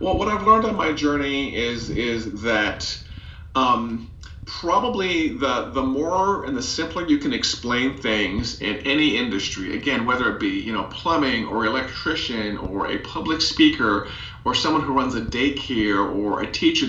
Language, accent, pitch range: English, American, 110-145 Hz